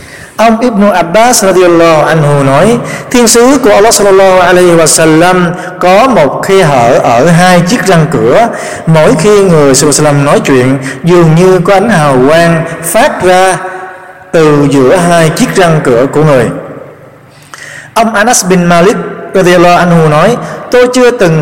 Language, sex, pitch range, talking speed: Vietnamese, male, 150-195 Hz, 160 wpm